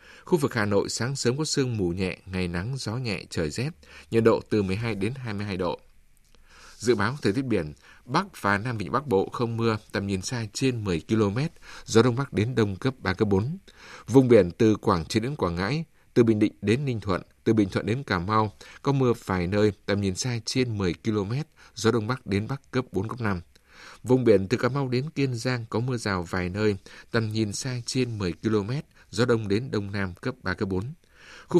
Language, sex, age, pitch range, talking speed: Vietnamese, male, 60-79, 100-125 Hz, 225 wpm